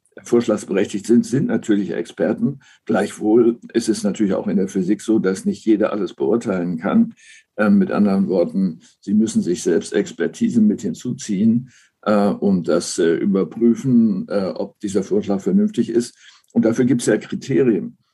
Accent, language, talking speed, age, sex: German, German, 160 wpm, 60-79, male